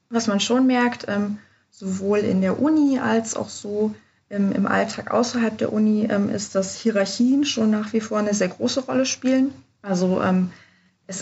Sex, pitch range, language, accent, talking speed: female, 185-220 Hz, German, German, 180 wpm